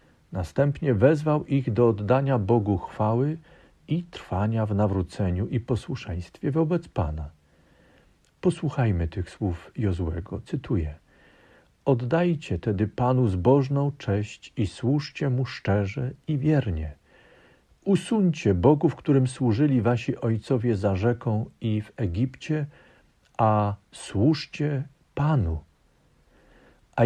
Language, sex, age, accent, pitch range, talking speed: Polish, male, 50-69, native, 100-145 Hz, 105 wpm